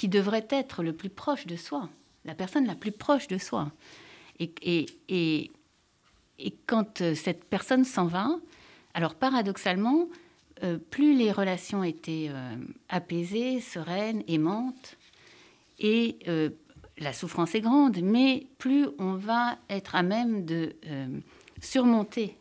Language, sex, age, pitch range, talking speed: French, female, 60-79, 165-240 Hz, 135 wpm